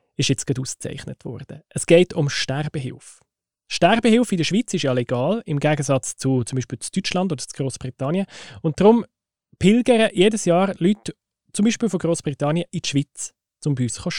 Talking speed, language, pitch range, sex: 175 wpm, German, 135-175 Hz, male